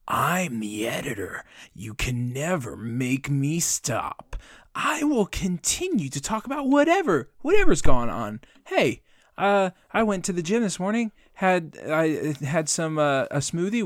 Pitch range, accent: 125-170 Hz, American